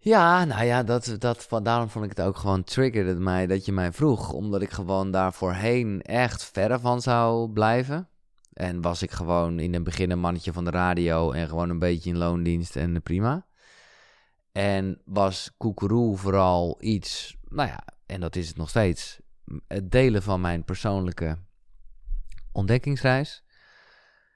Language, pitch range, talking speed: Dutch, 90-115 Hz, 160 wpm